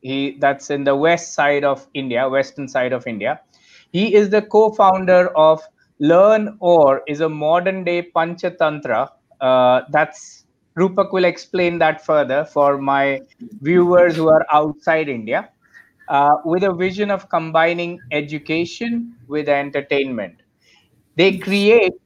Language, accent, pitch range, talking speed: English, Indian, 150-185 Hz, 120 wpm